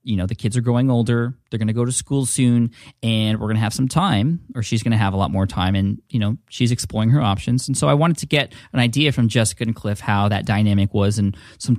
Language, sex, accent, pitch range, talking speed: English, male, American, 105-130 Hz, 280 wpm